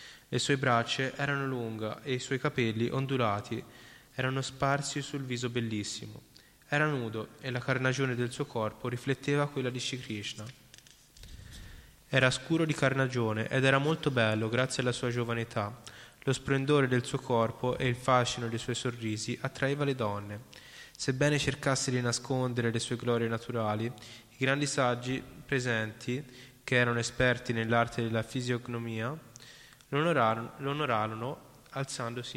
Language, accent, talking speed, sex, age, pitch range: Italian, native, 135 wpm, male, 10-29, 115-140 Hz